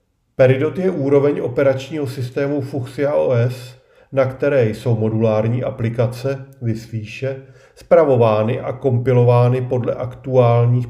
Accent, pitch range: native, 115-140 Hz